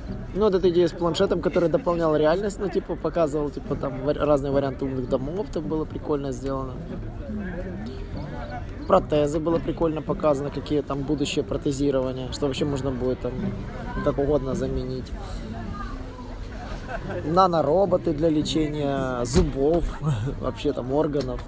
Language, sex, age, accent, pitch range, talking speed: Russian, male, 20-39, native, 125-170 Hz, 130 wpm